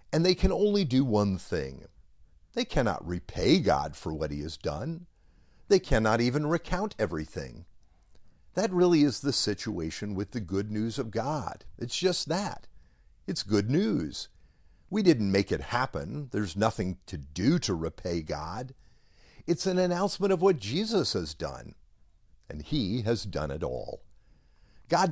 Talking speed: 155 wpm